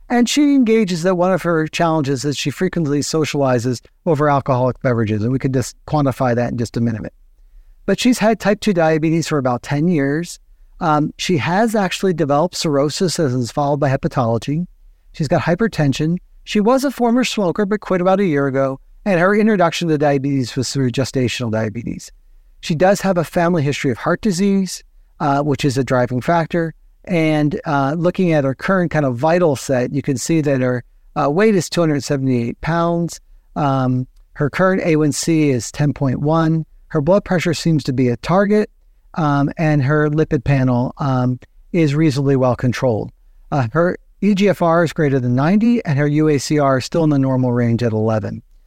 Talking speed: 180 wpm